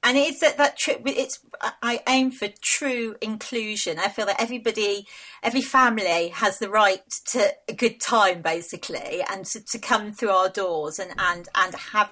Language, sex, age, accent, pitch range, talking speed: English, female, 40-59, British, 185-235 Hz, 180 wpm